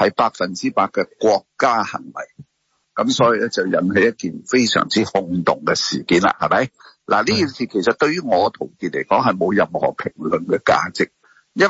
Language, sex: Chinese, male